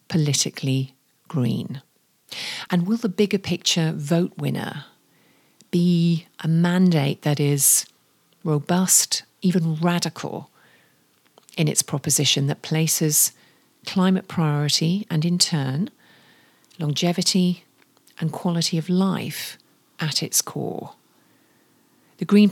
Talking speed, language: 100 wpm, English